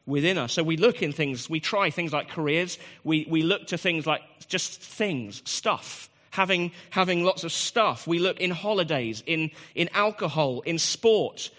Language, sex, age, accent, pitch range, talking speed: English, male, 30-49, British, 145-190 Hz, 180 wpm